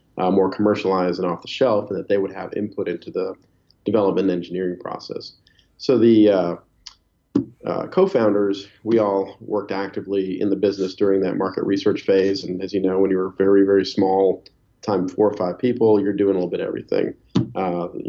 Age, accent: 40-59, American